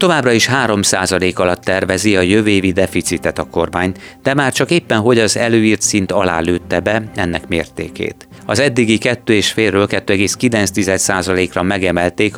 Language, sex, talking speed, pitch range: Hungarian, male, 140 wpm, 90-115 Hz